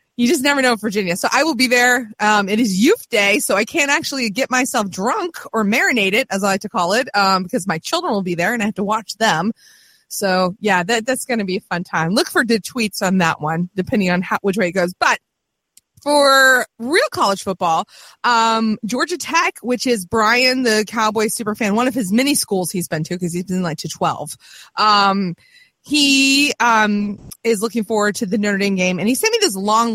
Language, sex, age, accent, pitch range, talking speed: English, female, 20-39, American, 190-245 Hz, 230 wpm